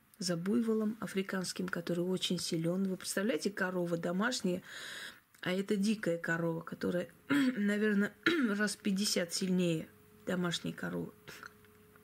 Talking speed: 110 wpm